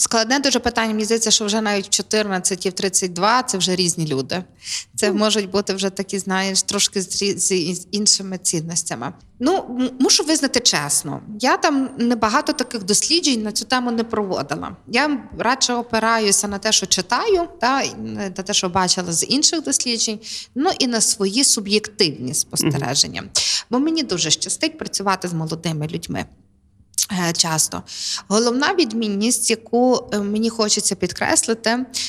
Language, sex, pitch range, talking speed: Ukrainian, female, 180-235 Hz, 145 wpm